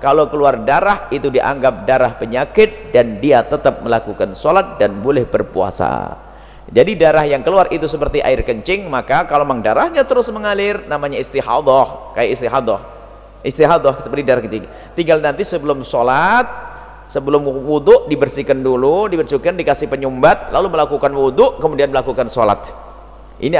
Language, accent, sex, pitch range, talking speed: Indonesian, native, male, 130-180 Hz, 140 wpm